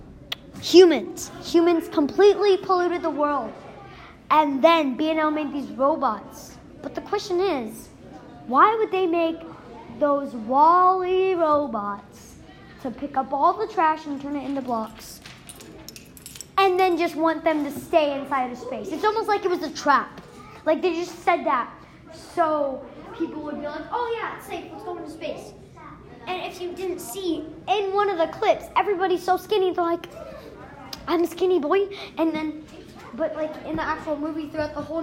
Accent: American